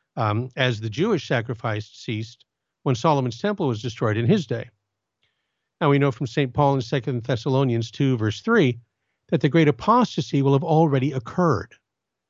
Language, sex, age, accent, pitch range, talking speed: English, male, 50-69, American, 115-155 Hz, 165 wpm